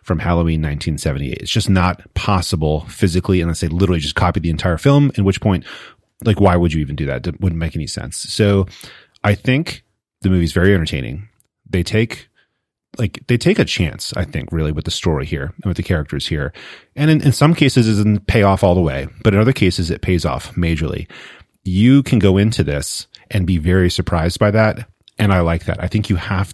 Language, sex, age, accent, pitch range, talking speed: English, male, 30-49, American, 85-110 Hz, 215 wpm